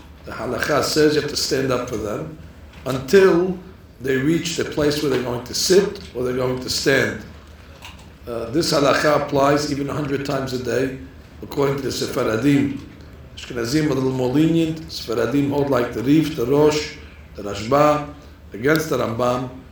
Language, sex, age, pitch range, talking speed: English, male, 60-79, 90-150 Hz, 165 wpm